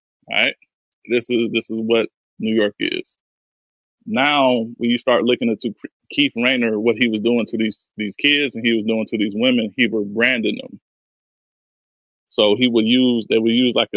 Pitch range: 110-120 Hz